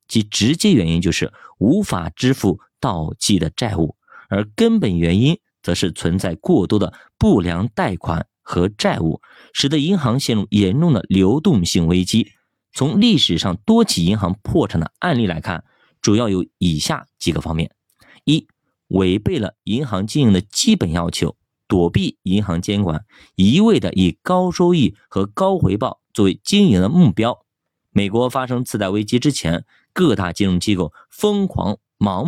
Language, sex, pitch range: Chinese, male, 90-155 Hz